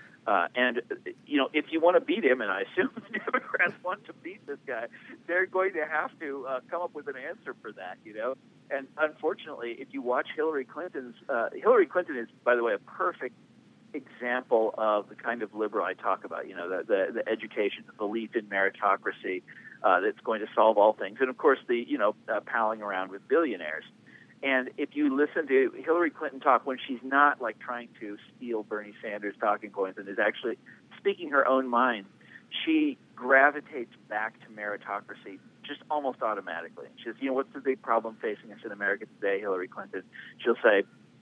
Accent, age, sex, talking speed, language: American, 50-69, male, 200 wpm, English